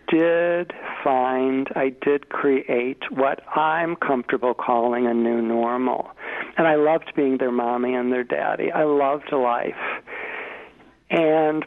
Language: English